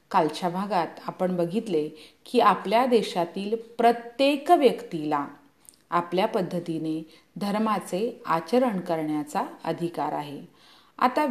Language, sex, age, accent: Hindi, female, 40-59, native